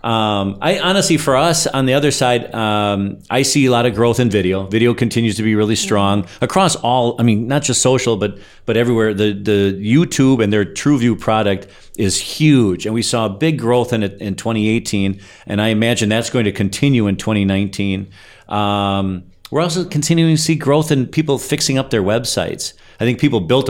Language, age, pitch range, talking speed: English, 40-59, 100-120 Hz, 200 wpm